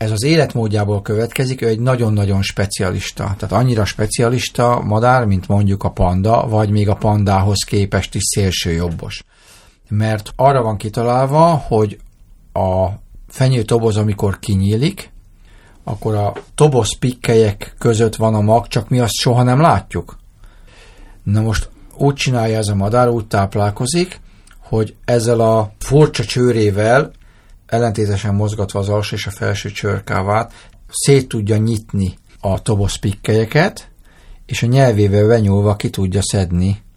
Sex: male